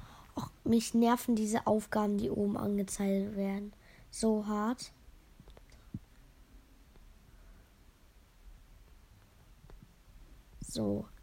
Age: 20-39